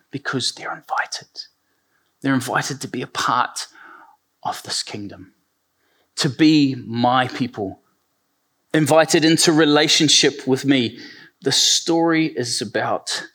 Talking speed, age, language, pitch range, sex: 110 wpm, 30-49, English, 105-140 Hz, male